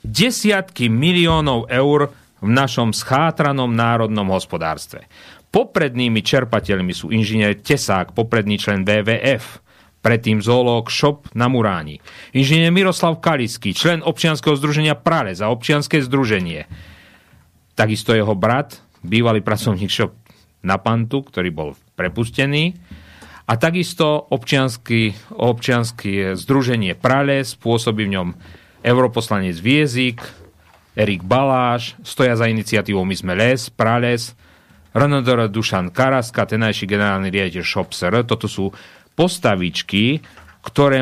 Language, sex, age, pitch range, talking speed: Slovak, male, 40-59, 105-140 Hz, 105 wpm